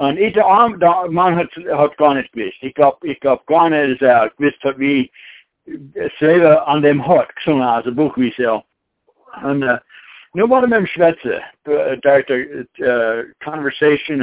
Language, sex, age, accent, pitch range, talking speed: English, male, 60-79, American, 140-190 Hz, 85 wpm